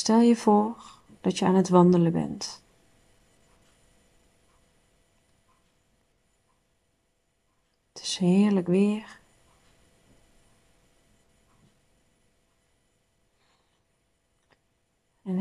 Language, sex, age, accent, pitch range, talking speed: Dutch, female, 40-59, Dutch, 170-210 Hz, 55 wpm